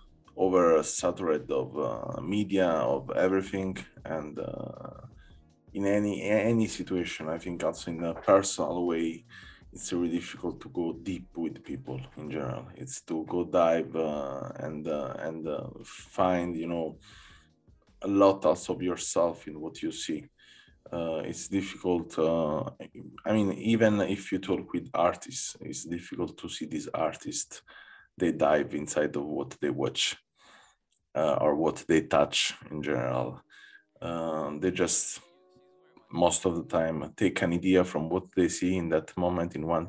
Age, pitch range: 20-39, 80-95 Hz